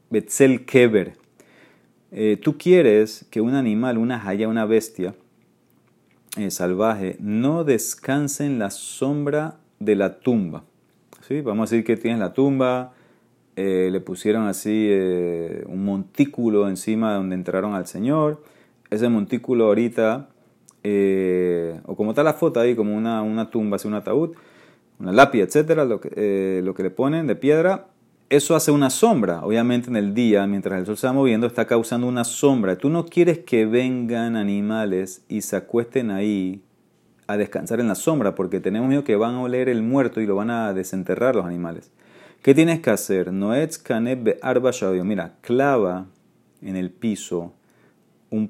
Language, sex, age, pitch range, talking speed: Spanish, male, 30-49, 100-125 Hz, 155 wpm